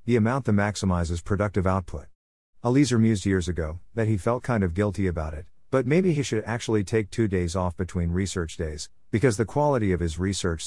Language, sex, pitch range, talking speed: English, male, 90-115 Hz, 200 wpm